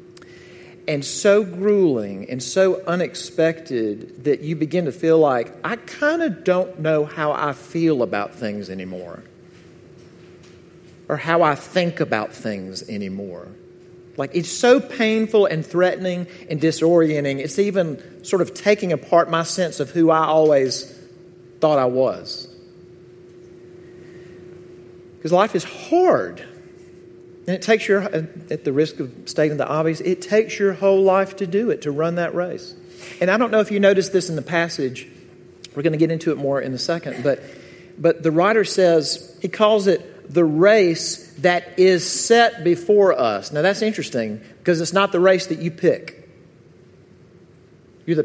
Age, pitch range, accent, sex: 40-59, 150-185 Hz, American, male